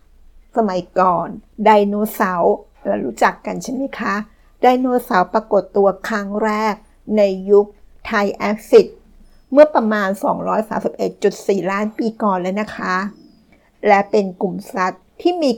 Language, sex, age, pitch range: Thai, female, 60-79, 195-225 Hz